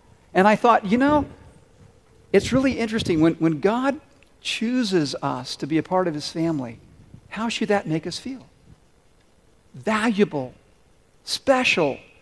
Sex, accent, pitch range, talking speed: male, American, 165-220 Hz, 140 wpm